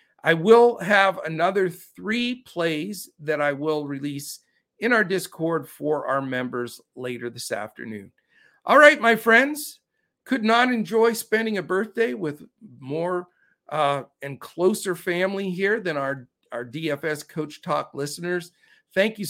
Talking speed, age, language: 140 wpm, 50-69, English